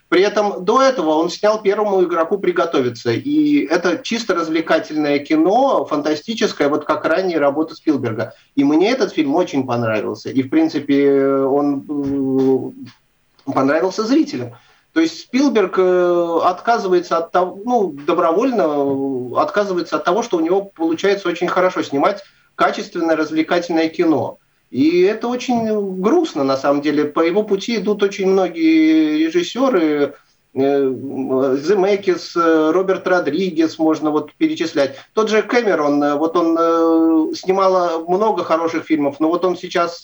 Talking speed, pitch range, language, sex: 130 wpm, 140-205 Hz, Russian, male